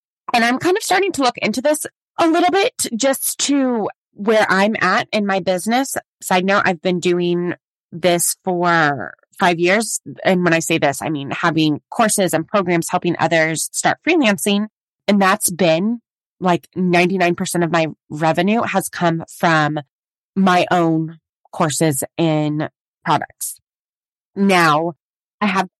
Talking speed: 145 wpm